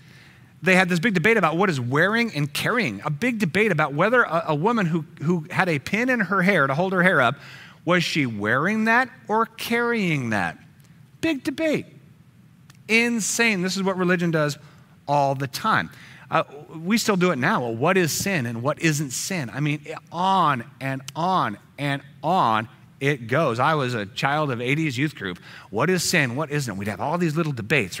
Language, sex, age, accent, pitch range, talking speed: English, male, 40-59, American, 140-185 Hz, 195 wpm